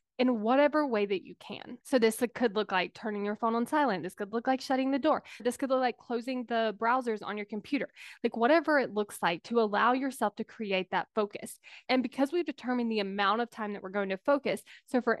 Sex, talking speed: female, 235 wpm